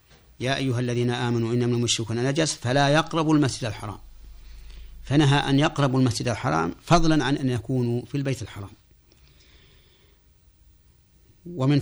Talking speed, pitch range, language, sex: 125 wpm, 105-130 Hz, Arabic, male